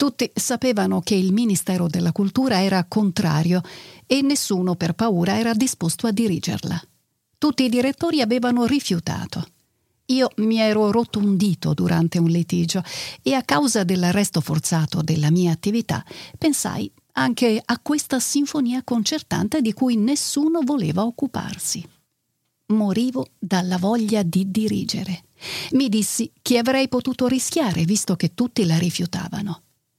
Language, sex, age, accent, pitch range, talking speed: Italian, female, 50-69, native, 175-255 Hz, 130 wpm